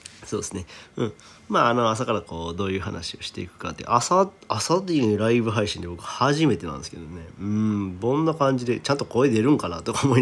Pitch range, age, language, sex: 90-125 Hz, 40-59, Japanese, male